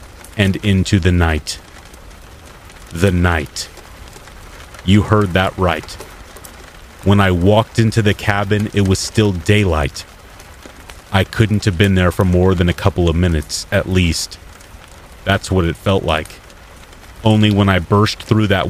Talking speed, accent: 145 wpm, American